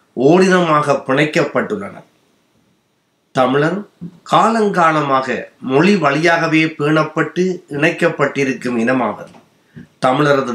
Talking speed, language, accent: 55 wpm, Tamil, native